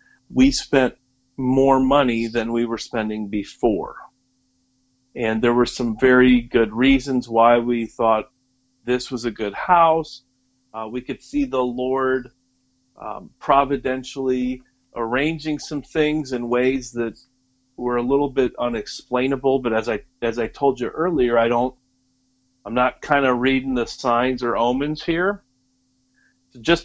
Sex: male